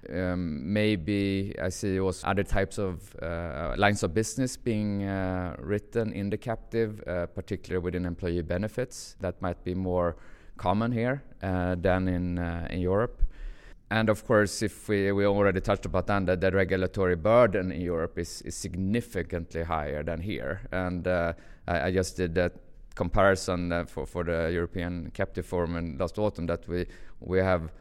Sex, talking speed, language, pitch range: male, 170 wpm, English, 85-100 Hz